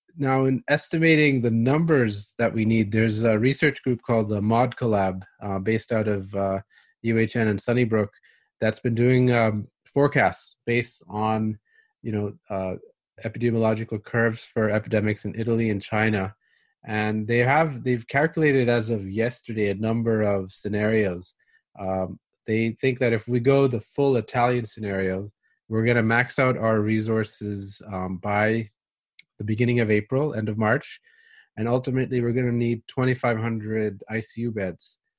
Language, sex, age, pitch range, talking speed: English, male, 30-49, 105-120 Hz, 150 wpm